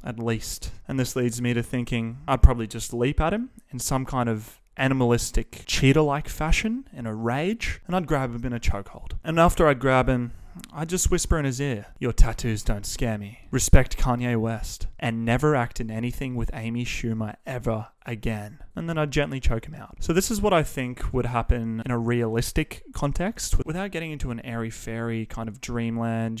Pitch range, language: 110-135 Hz, English